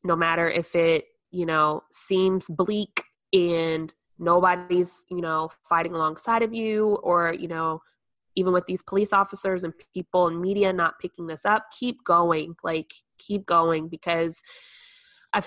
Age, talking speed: 20-39, 150 wpm